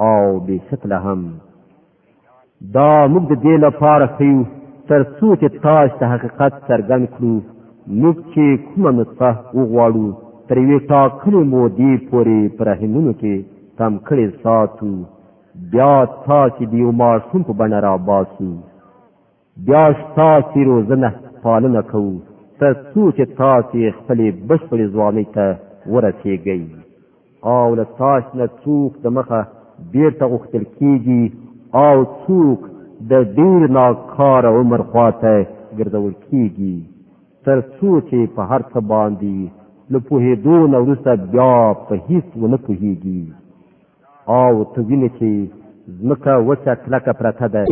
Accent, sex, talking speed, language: Turkish, male, 115 wpm, English